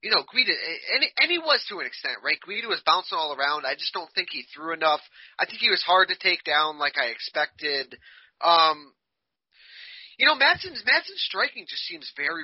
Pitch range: 150-200 Hz